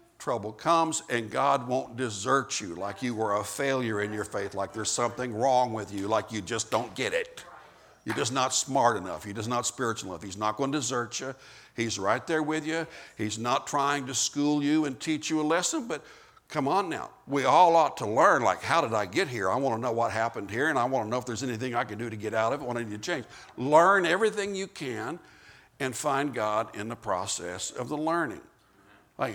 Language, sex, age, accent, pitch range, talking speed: Italian, male, 60-79, American, 110-135 Hz, 235 wpm